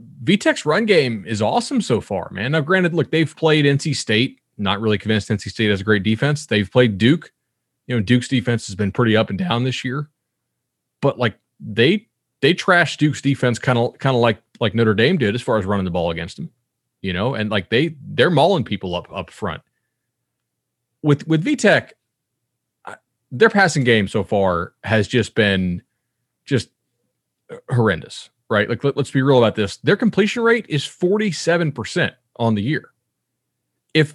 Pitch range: 105-145 Hz